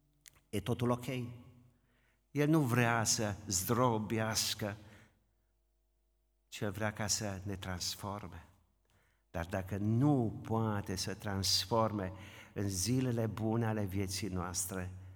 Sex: male